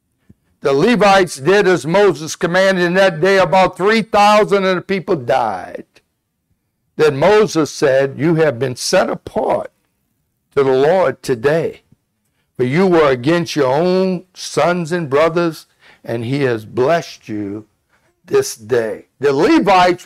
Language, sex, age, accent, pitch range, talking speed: English, male, 60-79, American, 170-230 Hz, 135 wpm